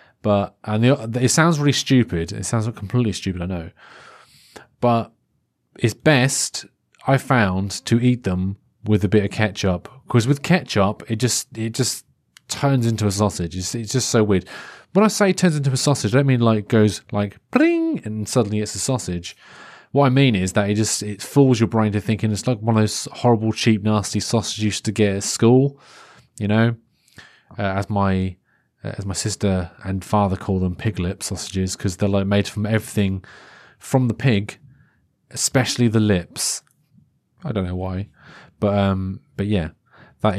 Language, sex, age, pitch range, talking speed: English, male, 30-49, 100-125 Hz, 185 wpm